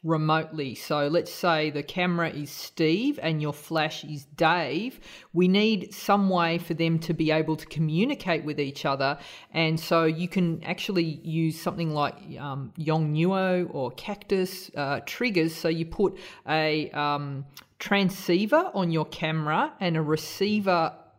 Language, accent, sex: English, Australian, female